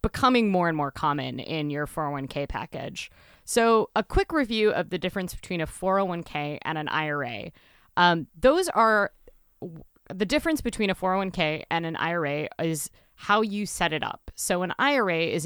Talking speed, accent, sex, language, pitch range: 170 wpm, American, female, English, 155-205 Hz